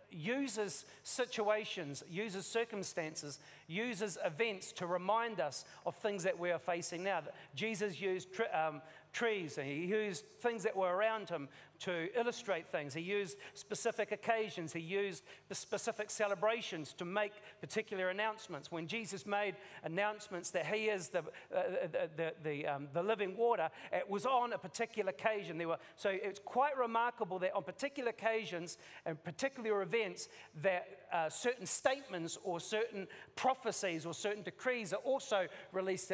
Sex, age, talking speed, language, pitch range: male, 40-59, 150 wpm, English, 175-220 Hz